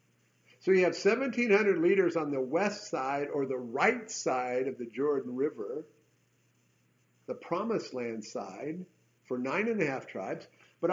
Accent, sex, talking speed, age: American, male, 155 wpm, 50-69